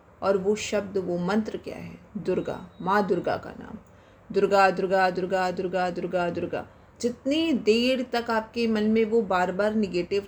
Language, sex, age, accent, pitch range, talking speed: Hindi, female, 30-49, native, 200-255 Hz, 165 wpm